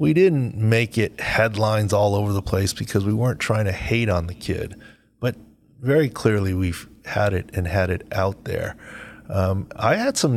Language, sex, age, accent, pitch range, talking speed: English, male, 30-49, American, 100-120 Hz, 190 wpm